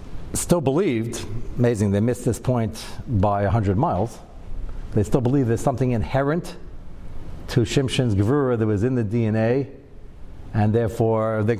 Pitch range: 100-125 Hz